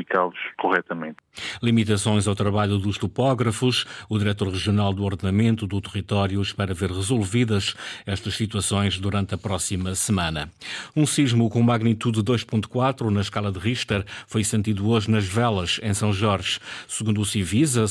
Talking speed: 140 wpm